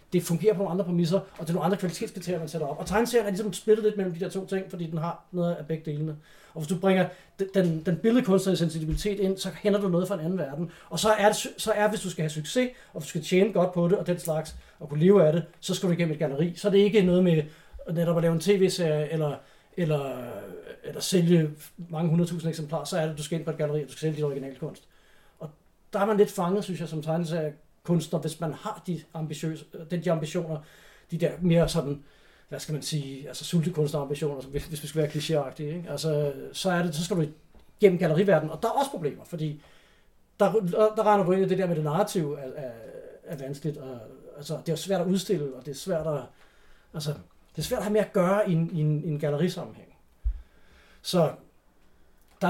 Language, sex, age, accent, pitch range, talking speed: English, male, 30-49, Danish, 155-195 Hz, 240 wpm